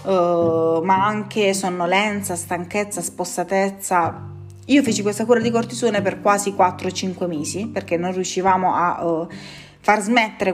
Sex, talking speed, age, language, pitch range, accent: female, 120 wpm, 20-39, Italian, 175-200 Hz, native